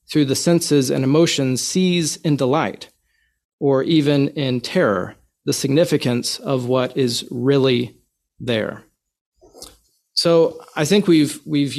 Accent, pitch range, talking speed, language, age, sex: American, 130-150 Hz, 120 wpm, English, 40-59, male